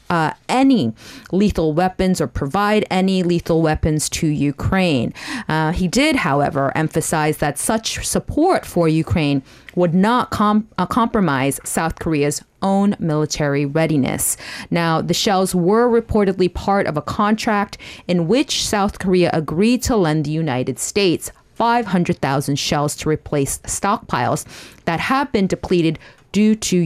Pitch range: 155-200 Hz